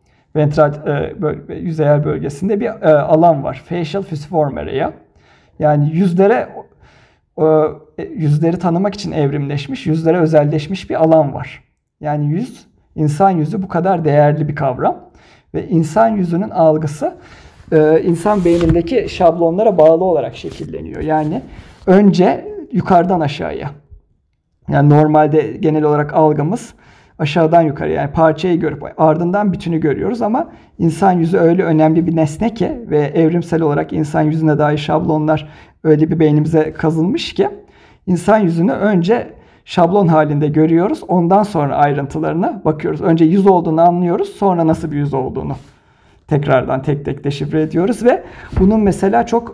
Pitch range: 150-175 Hz